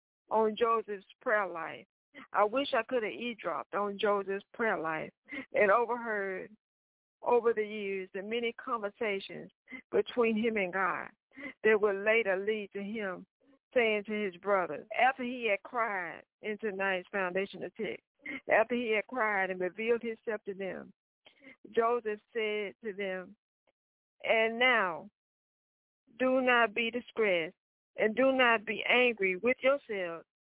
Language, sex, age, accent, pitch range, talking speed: English, female, 60-79, American, 200-245 Hz, 140 wpm